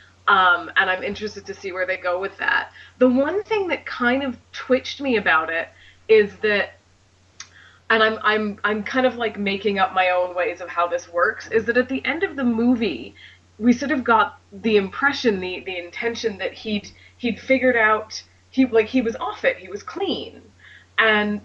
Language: English